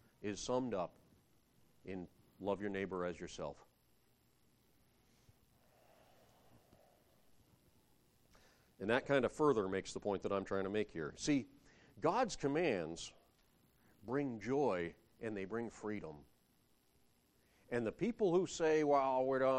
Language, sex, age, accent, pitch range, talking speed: English, male, 40-59, American, 105-145 Hz, 115 wpm